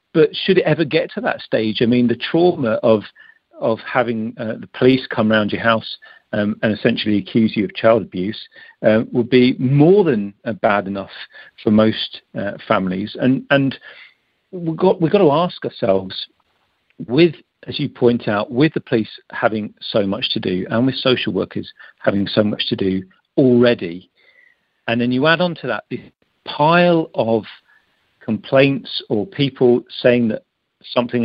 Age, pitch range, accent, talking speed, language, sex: 50-69, 110-145 Hz, British, 170 wpm, English, male